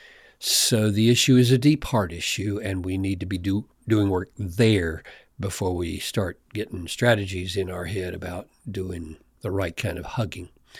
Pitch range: 105-175 Hz